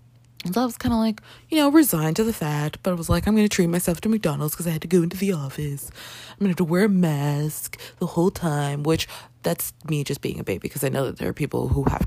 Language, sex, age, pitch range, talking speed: English, female, 20-39, 130-195 Hz, 290 wpm